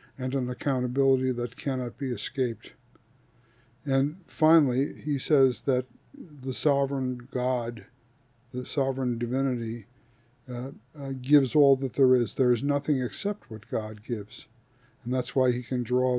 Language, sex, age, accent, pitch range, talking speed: English, male, 60-79, American, 120-135 Hz, 140 wpm